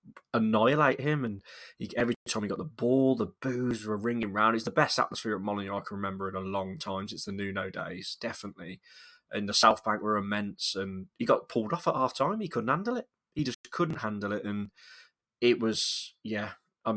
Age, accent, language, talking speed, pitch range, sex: 20-39, British, English, 210 wpm, 95-115 Hz, male